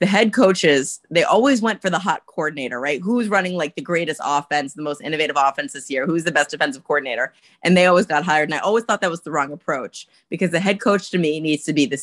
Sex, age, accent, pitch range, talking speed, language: female, 30-49, American, 145-185 Hz, 260 wpm, English